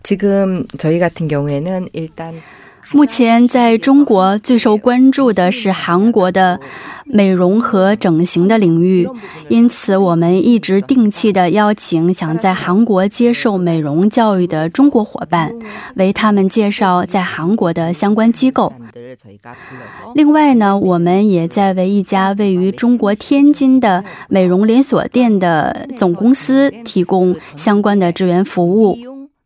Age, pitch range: 20-39, 180-230 Hz